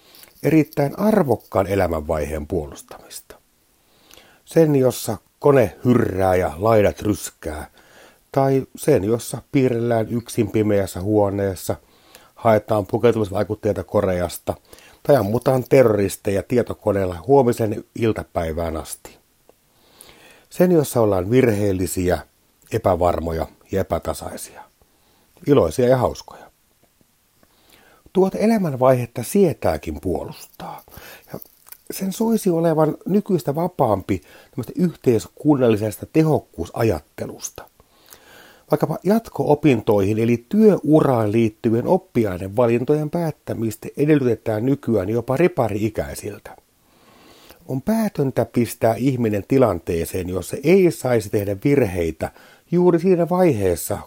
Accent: native